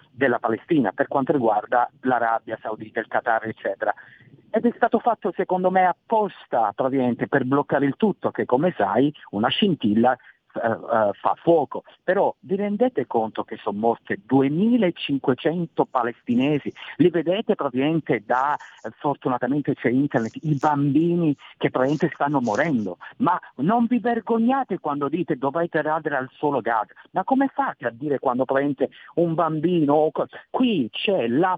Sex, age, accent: male, 50-69, native